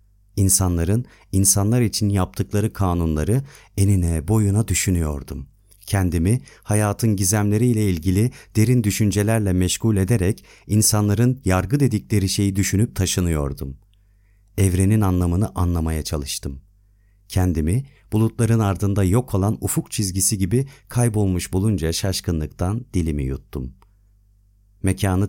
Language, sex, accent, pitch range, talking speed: Turkish, male, native, 90-105 Hz, 95 wpm